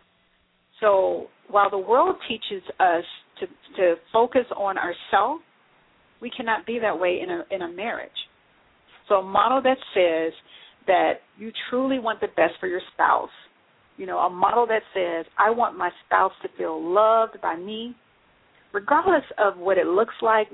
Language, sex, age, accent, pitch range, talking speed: English, female, 40-59, American, 190-250 Hz, 160 wpm